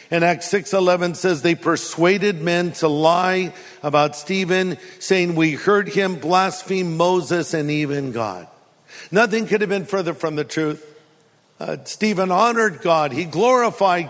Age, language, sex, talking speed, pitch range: 50-69, English, male, 145 wpm, 150-200 Hz